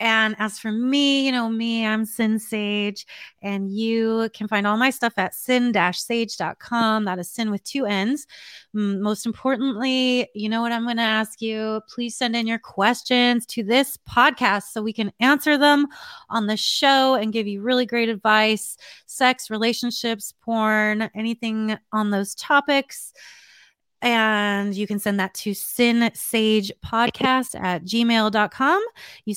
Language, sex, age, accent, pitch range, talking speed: English, female, 30-49, American, 210-250 Hz, 155 wpm